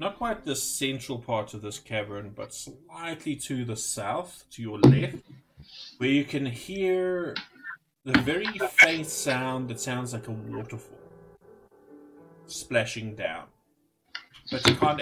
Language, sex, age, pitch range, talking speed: English, male, 30-49, 115-150 Hz, 135 wpm